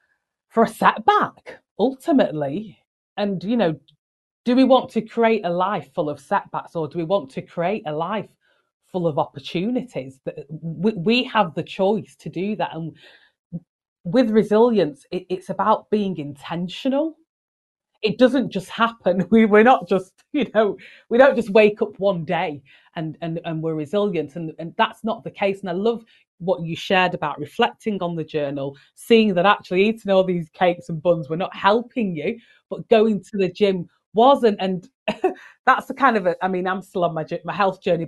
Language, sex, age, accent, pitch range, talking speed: English, female, 30-49, British, 175-235 Hz, 180 wpm